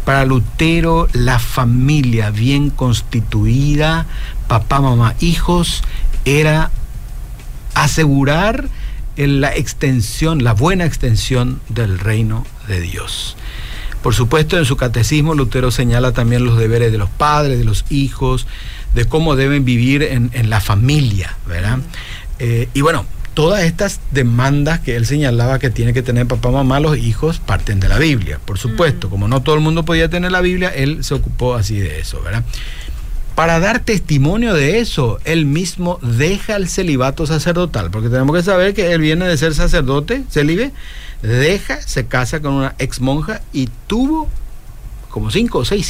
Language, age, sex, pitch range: Spanish, 50-69, male, 115-160 Hz